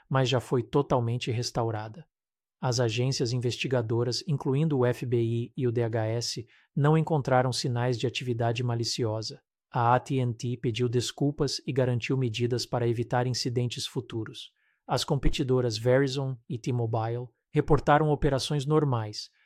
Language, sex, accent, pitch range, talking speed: Portuguese, male, Brazilian, 125-145 Hz, 120 wpm